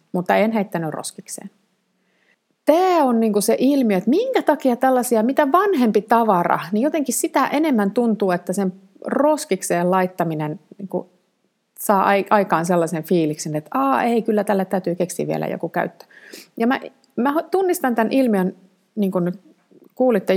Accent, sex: native, female